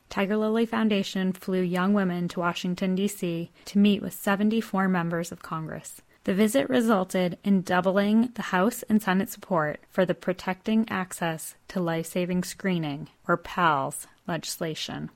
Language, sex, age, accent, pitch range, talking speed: English, female, 20-39, American, 175-210 Hz, 145 wpm